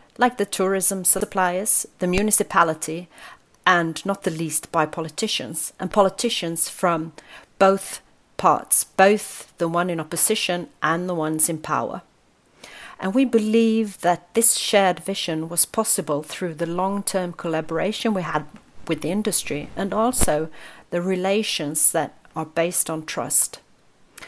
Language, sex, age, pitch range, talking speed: English, female, 40-59, 165-205 Hz, 135 wpm